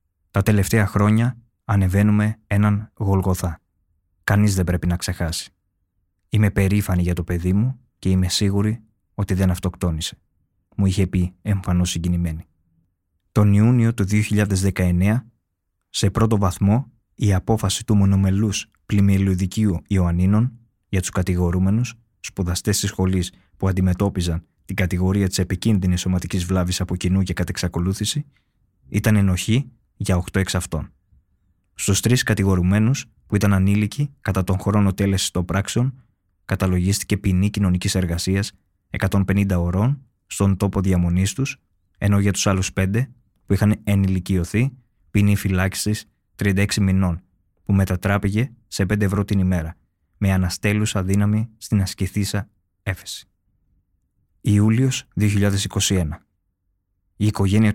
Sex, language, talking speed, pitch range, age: male, Greek, 115 wpm, 90-105 Hz, 20-39